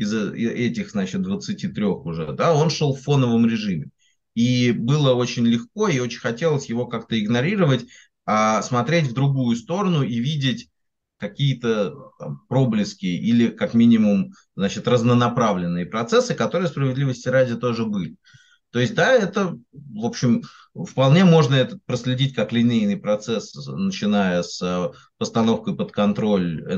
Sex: male